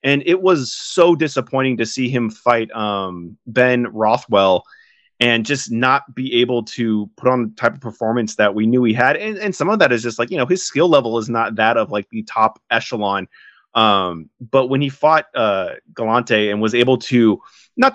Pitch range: 110-135 Hz